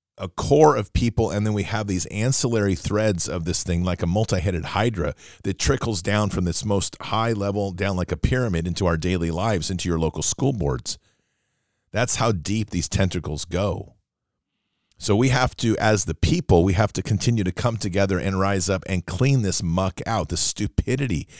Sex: male